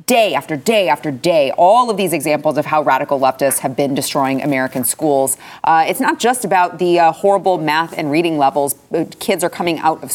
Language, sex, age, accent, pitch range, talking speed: English, female, 30-49, American, 155-205 Hz, 205 wpm